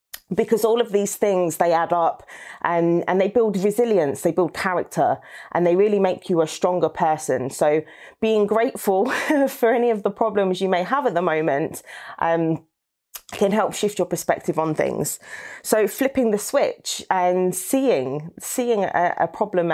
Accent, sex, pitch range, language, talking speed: British, female, 175-220 Hz, English, 170 wpm